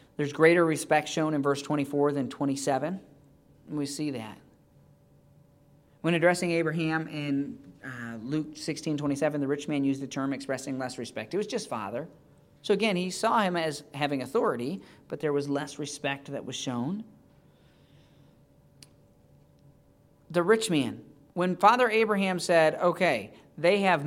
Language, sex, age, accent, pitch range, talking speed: English, male, 40-59, American, 145-215 Hz, 150 wpm